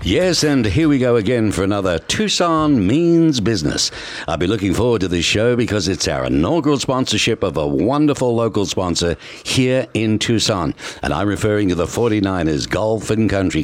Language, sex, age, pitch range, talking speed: English, male, 60-79, 95-130 Hz, 175 wpm